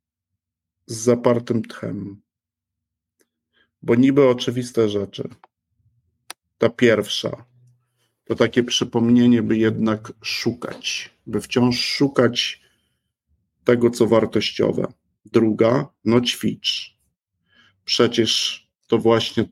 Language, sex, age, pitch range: Polish, male, 50-69, 105-125 Hz